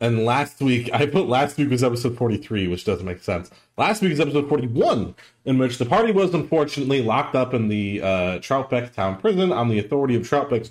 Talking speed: 215 wpm